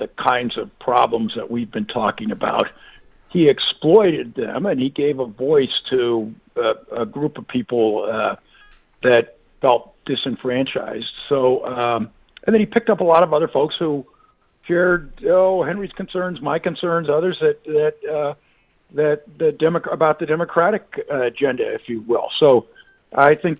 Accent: American